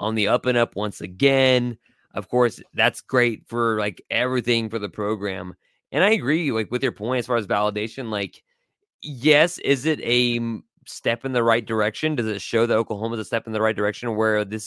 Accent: American